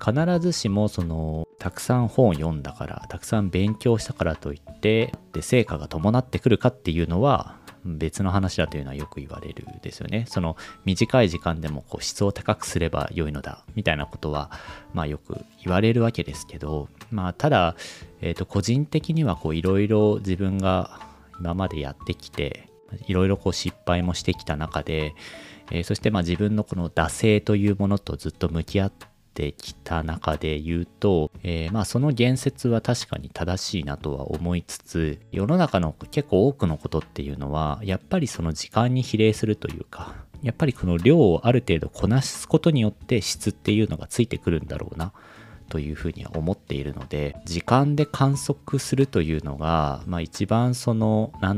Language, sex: Japanese, male